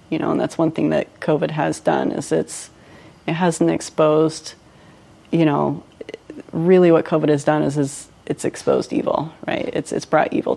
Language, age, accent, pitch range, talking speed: English, 30-49, American, 150-170 Hz, 180 wpm